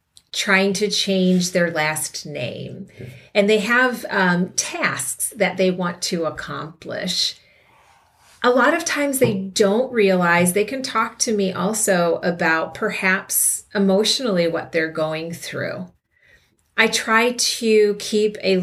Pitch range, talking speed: 175-215 Hz, 130 wpm